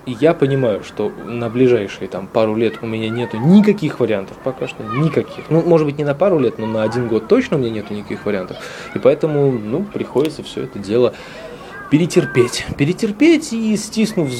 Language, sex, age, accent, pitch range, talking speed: Russian, male, 20-39, native, 115-160 Hz, 190 wpm